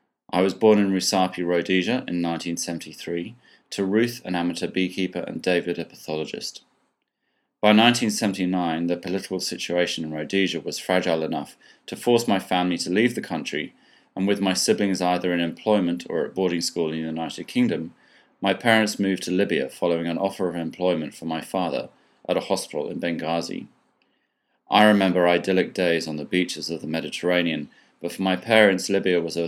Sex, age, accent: male, 30-49, British